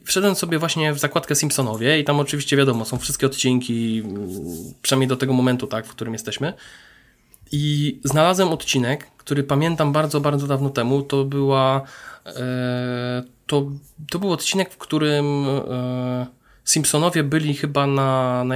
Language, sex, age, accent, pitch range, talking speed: Polish, male, 20-39, native, 125-155 Hz, 145 wpm